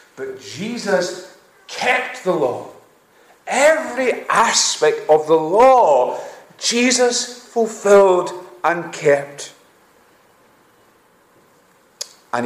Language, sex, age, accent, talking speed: English, male, 40-59, British, 70 wpm